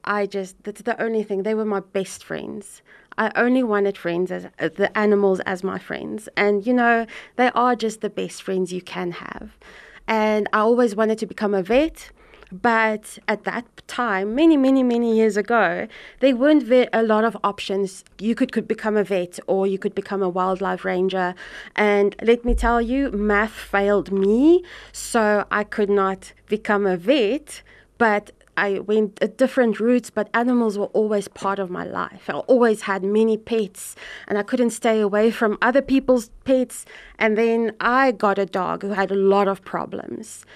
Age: 20-39